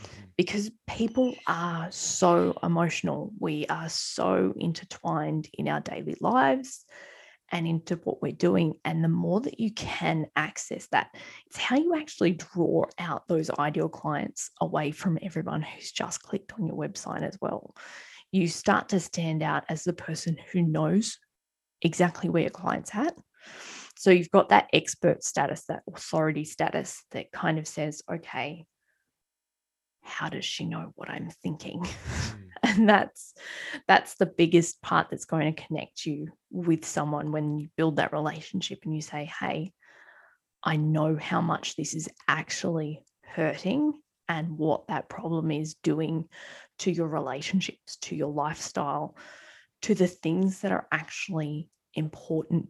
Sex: female